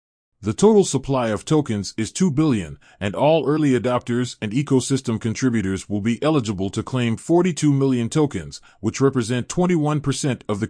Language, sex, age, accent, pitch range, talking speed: English, male, 30-49, American, 110-145 Hz, 155 wpm